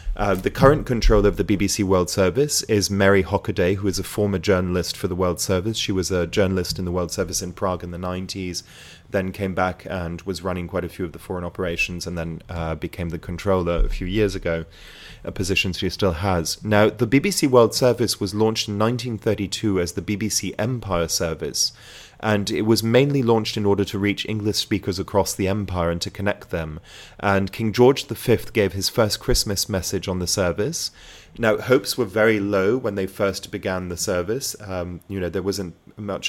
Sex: male